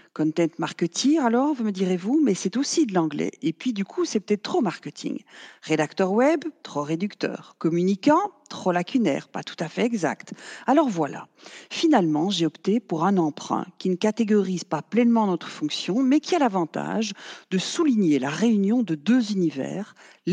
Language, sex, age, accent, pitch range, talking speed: French, female, 50-69, French, 165-235 Hz, 170 wpm